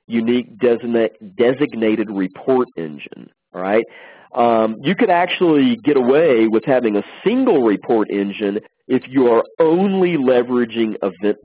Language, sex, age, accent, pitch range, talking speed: English, male, 40-59, American, 100-125 Hz, 130 wpm